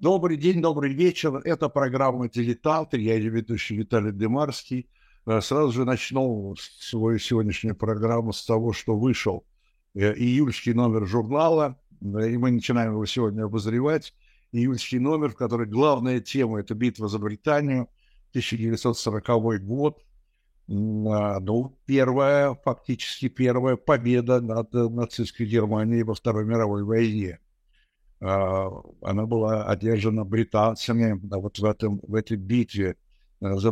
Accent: native